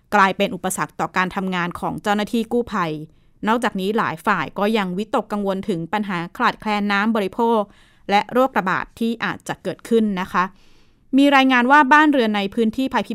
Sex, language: female, Thai